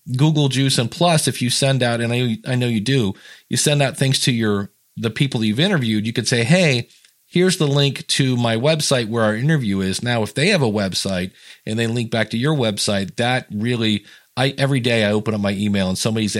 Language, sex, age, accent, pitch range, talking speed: English, male, 40-59, American, 100-130 Hz, 235 wpm